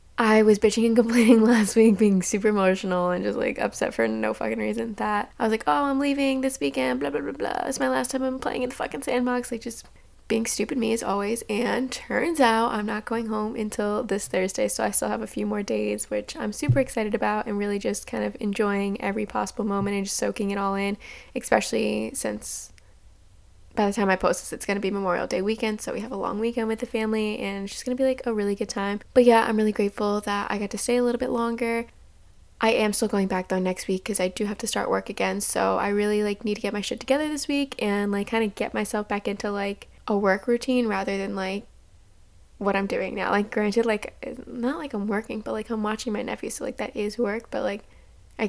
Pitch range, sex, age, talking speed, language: 195-230 Hz, female, 10-29, 250 wpm, English